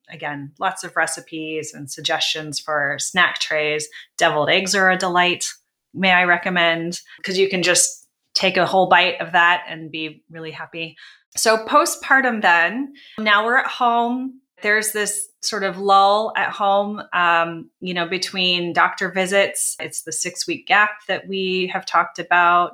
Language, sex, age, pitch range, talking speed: English, female, 20-39, 155-190 Hz, 160 wpm